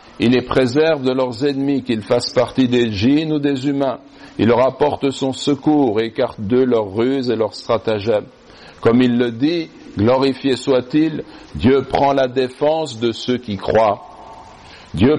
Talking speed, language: 165 wpm, French